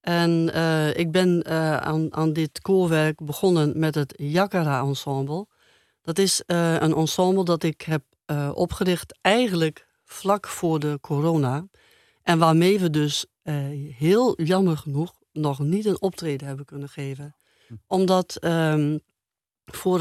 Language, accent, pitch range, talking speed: Dutch, Dutch, 150-175 Hz, 140 wpm